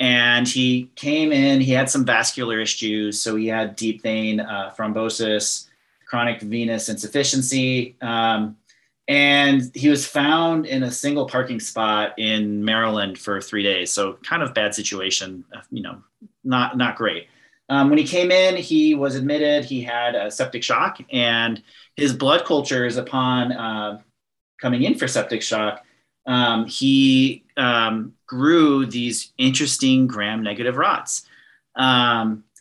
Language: English